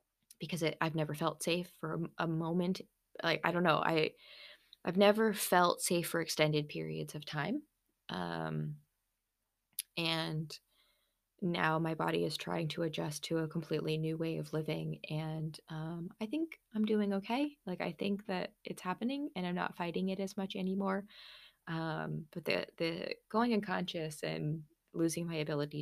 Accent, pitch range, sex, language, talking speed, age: American, 155-190 Hz, female, English, 165 wpm, 20-39